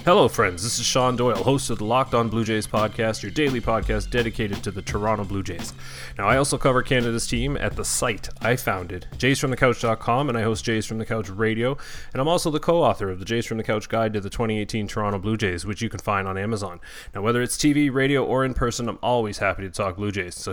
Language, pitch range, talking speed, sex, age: English, 100-120 Hz, 245 wpm, male, 30-49